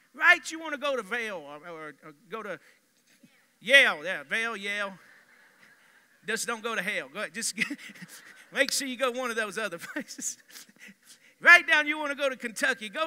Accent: American